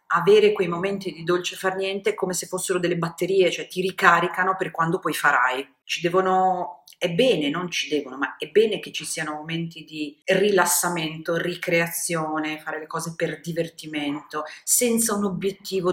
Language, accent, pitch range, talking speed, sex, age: Italian, native, 150-180 Hz, 170 wpm, female, 40-59